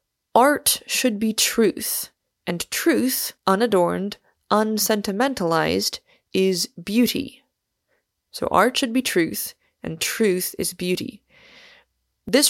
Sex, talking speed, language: female, 95 wpm, English